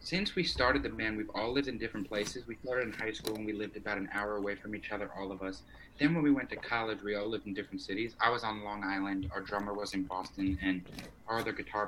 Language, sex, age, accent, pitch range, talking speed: English, male, 20-39, American, 95-115 Hz, 280 wpm